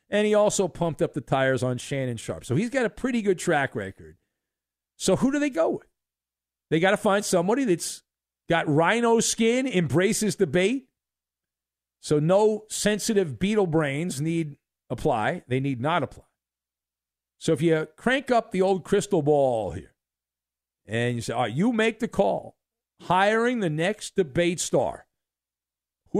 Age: 50-69